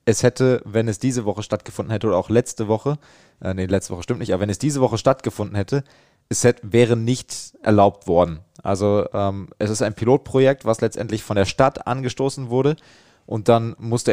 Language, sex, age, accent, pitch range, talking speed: German, male, 20-39, German, 100-120 Hz, 195 wpm